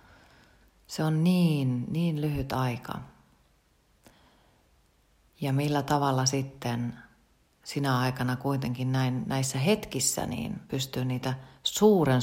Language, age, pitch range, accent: Finnish, 40-59, 130-165 Hz, native